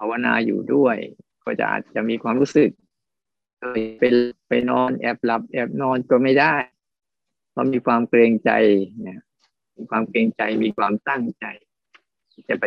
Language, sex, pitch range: Thai, male, 110-130 Hz